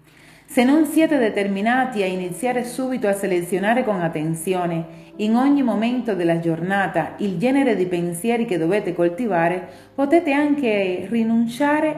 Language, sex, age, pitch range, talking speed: Italian, female, 40-59, 175-245 Hz, 130 wpm